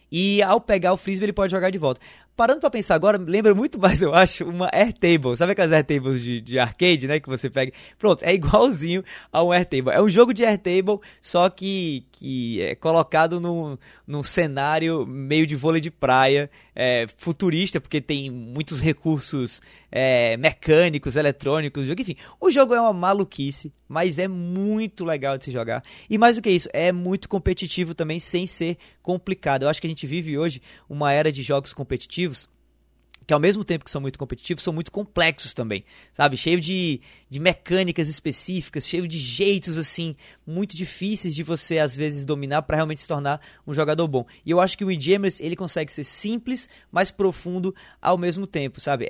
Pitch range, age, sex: 145-185 Hz, 20-39, male